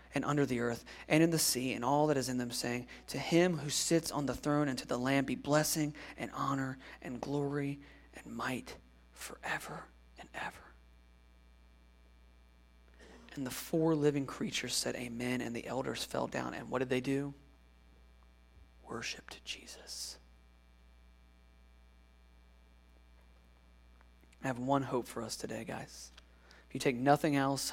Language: English